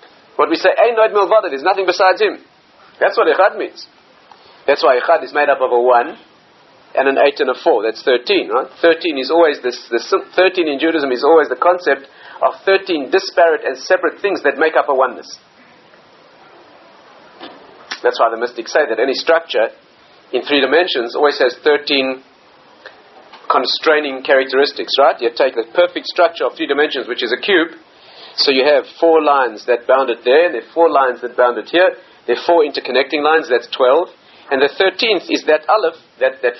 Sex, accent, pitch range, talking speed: male, South African, 140-220 Hz, 190 wpm